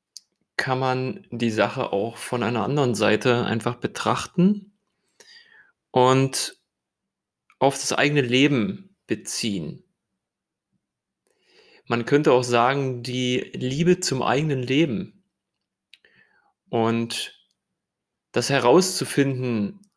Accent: German